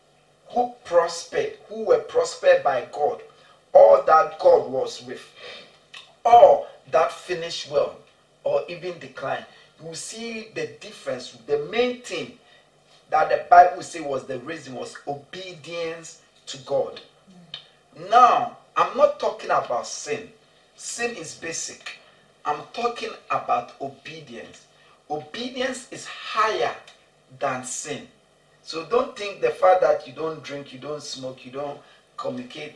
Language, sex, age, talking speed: English, male, 40-59, 130 wpm